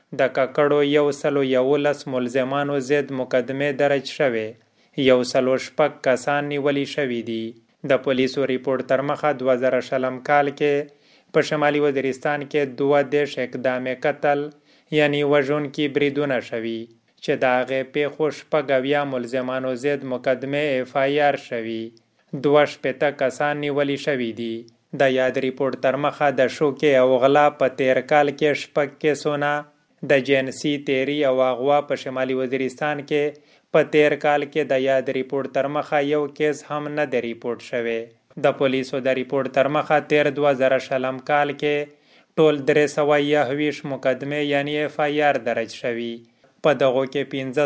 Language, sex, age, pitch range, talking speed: Urdu, male, 20-39, 130-150 Hz, 135 wpm